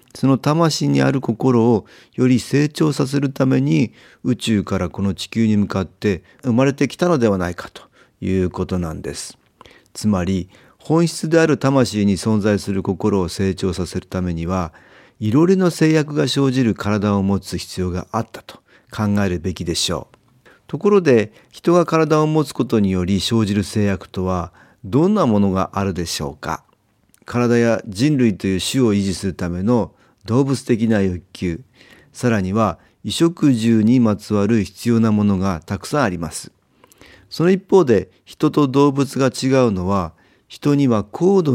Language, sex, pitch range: Japanese, male, 95-135 Hz